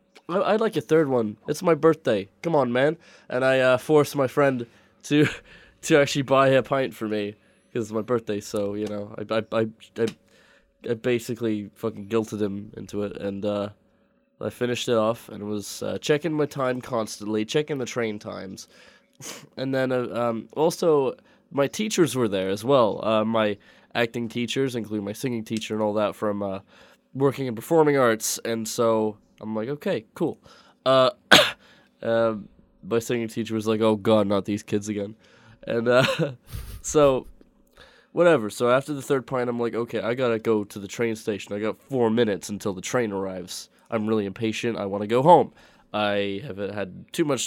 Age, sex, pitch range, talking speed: 20-39, male, 105-135 Hz, 190 wpm